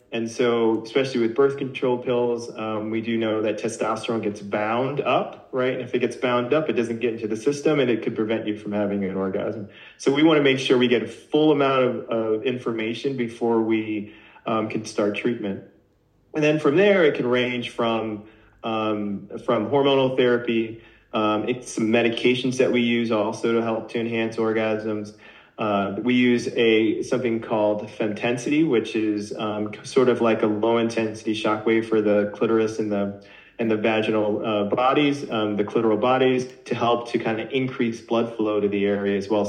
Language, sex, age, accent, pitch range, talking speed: English, male, 30-49, American, 110-125 Hz, 190 wpm